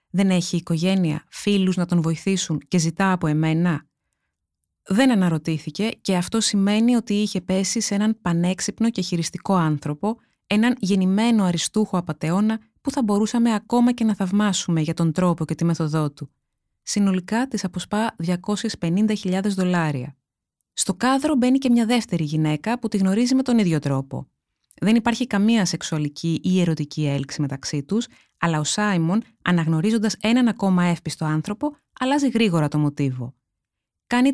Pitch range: 165-220 Hz